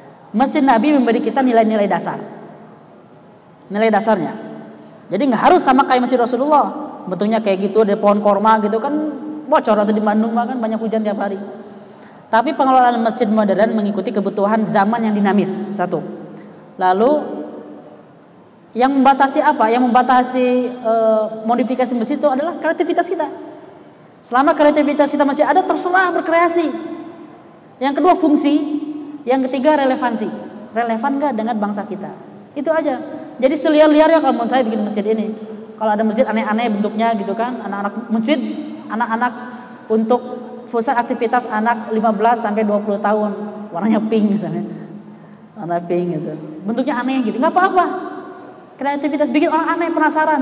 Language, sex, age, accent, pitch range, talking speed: Indonesian, female, 20-39, native, 215-290 Hz, 140 wpm